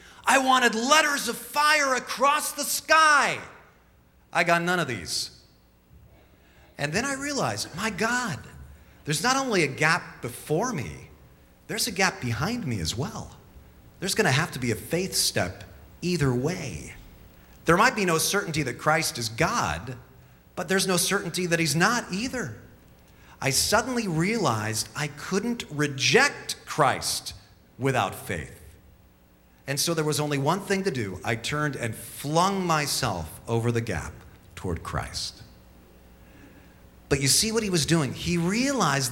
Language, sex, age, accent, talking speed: English, male, 40-59, American, 150 wpm